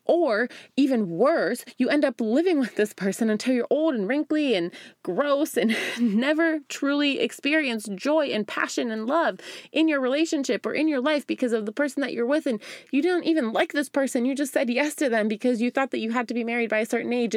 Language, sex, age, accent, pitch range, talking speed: English, female, 20-39, American, 220-280 Hz, 230 wpm